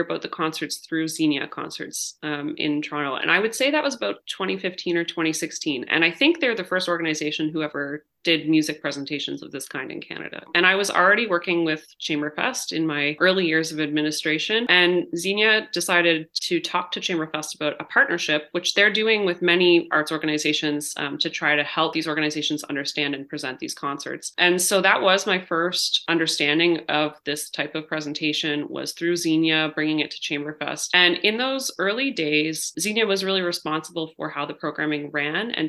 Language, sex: English, female